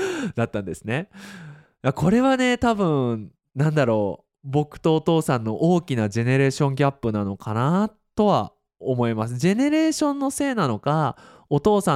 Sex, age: male, 20-39